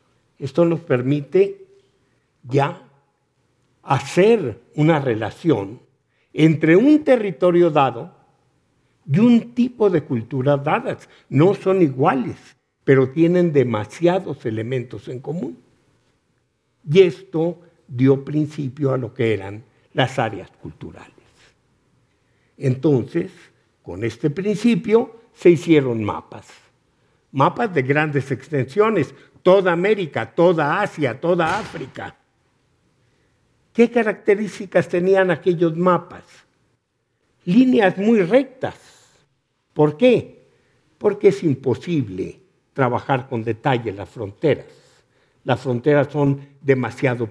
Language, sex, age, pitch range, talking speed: Spanish, male, 60-79, 135-185 Hz, 95 wpm